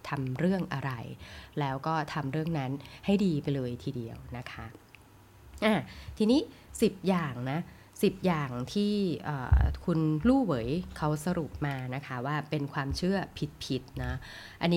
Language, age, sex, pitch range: Thai, 20-39, female, 135-180 Hz